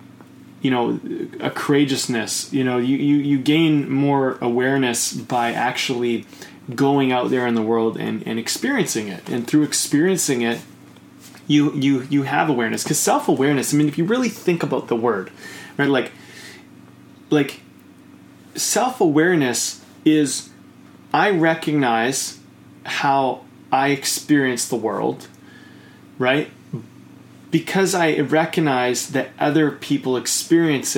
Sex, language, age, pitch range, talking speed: male, English, 20-39, 125-155 Hz, 125 wpm